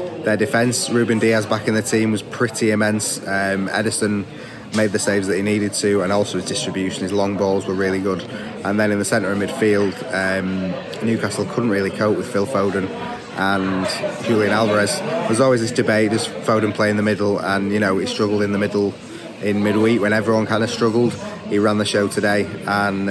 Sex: male